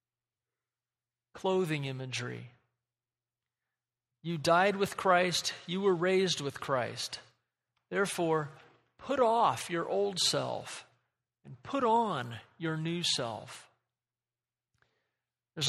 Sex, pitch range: male, 150-215 Hz